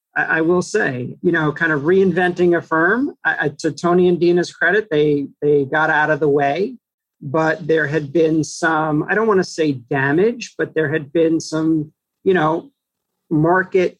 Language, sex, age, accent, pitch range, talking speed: English, male, 40-59, American, 145-175 Hz, 180 wpm